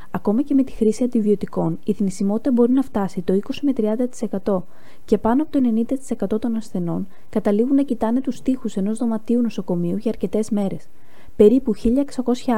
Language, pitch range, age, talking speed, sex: Greek, 195-245 Hz, 20-39, 155 wpm, female